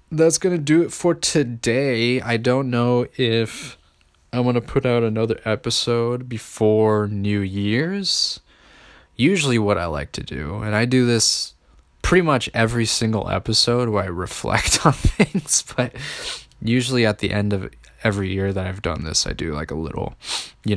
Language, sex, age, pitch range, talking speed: English, male, 20-39, 95-125 Hz, 170 wpm